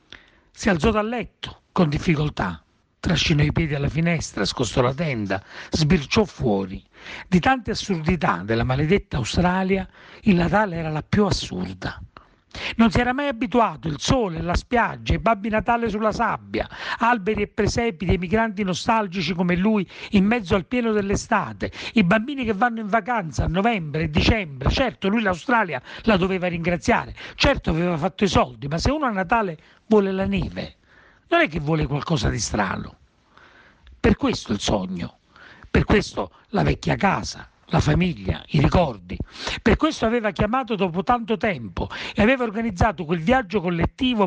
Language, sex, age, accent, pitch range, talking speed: Italian, male, 40-59, native, 160-220 Hz, 160 wpm